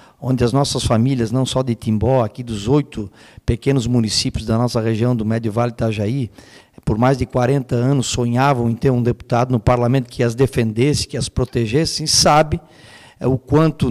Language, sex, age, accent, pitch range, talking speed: Portuguese, male, 50-69, Brazilian, 120-140 Hz, 180 wpm